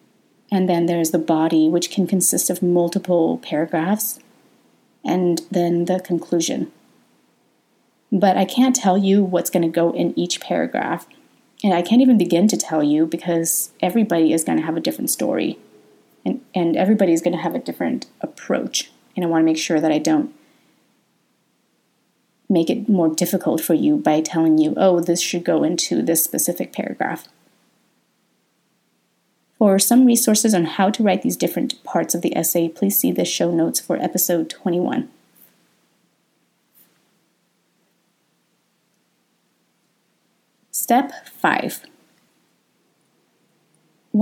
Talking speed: 140 wpm